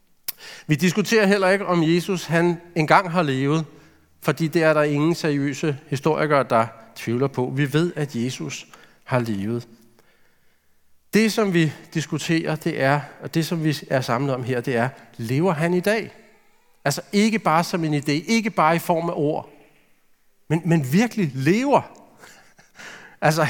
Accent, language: native, Danish